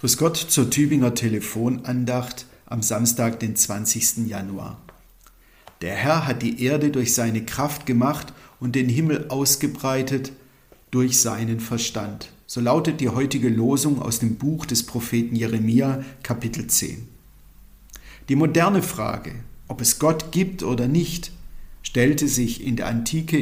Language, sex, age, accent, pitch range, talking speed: German, male, 50-69, German, 120-150 Hz, 135 wpm